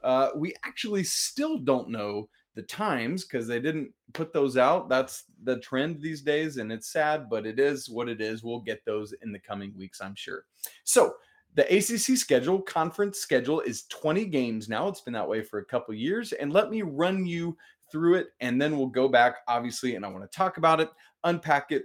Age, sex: 30-49, male